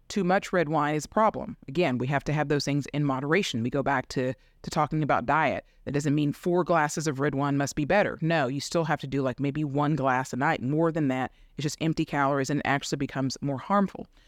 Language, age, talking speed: English, 30-49, 250 wpm